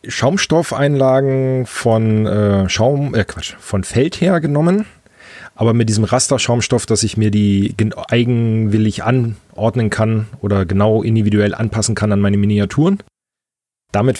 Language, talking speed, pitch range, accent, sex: German, 125 wpm, 105-135 Hz, German, male